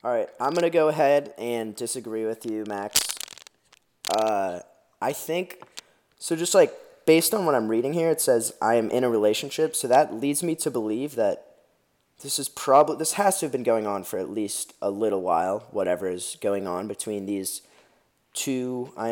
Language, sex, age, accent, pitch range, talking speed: English, male, 20-39, American, 105-140 Hz, 190 wpm